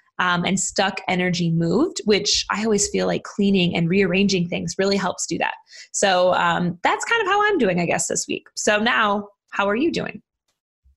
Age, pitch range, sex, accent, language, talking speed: 20-39, 185-225 Hz, female, American, English, 195 wpm